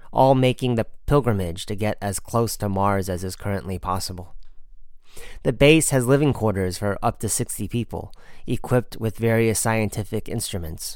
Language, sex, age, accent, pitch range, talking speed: English, male, 30-49, American, 95-115 Hz, 160 wpm